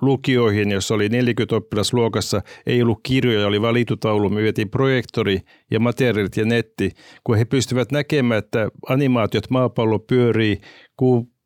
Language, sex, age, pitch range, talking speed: Finnish, male, 50-69, 110-130 Hz, 130 wpm